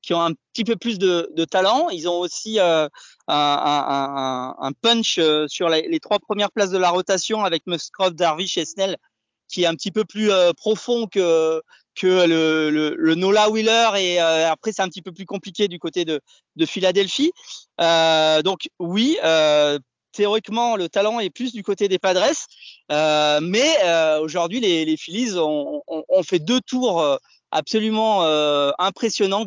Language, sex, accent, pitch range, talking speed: French, male, French, 165-225 Hz, 175 wpm